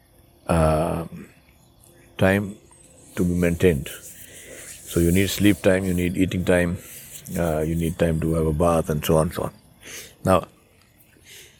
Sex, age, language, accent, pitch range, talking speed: male, 60-79, English, Indian, 90-100 Hz, 145 wpm